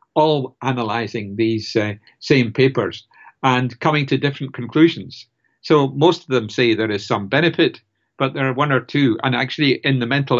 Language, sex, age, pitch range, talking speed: English, male, 60-79, 110-135 Hz, 180 wpm